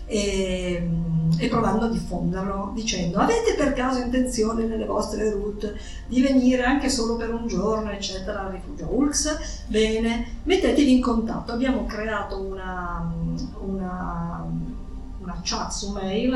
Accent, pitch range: native, 185-240 Hz